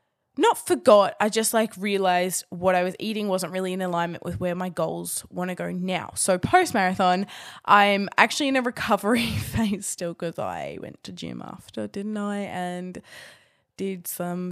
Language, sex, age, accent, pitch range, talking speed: English, female, 10-29, Australian, 175-205 Hz, 180 wpm